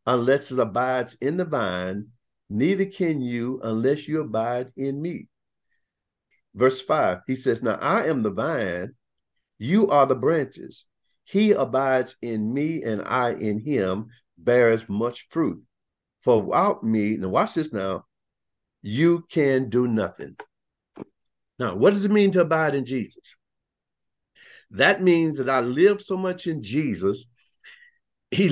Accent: American